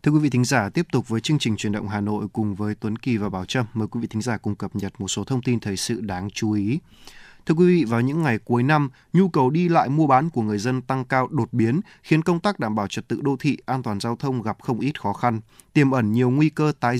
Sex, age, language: male, 20-39, Vietnamese